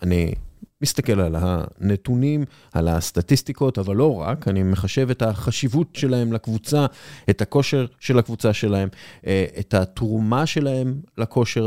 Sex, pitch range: male, 100-135 Hz